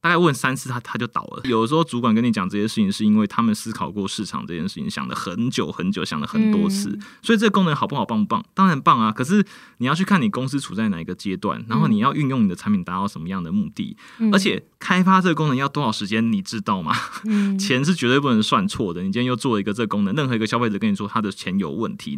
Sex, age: male, 20-39